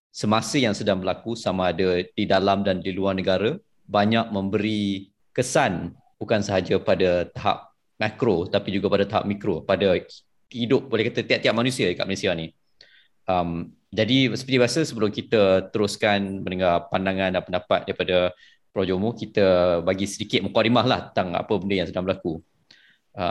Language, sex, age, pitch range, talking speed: Malay, male, 20-39, 95-120 Hz, 155 wpm